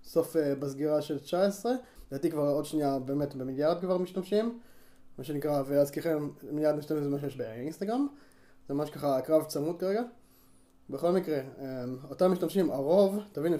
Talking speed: 155 wpm